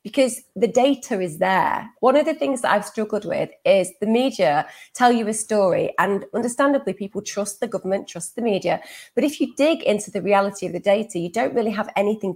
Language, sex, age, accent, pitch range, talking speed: English, female, 30-49, British, 190-240 Hz, 215 wpm